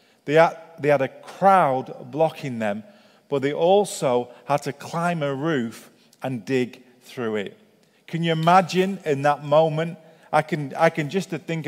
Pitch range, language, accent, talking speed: 135-165 Hz, English, British, 165 wpm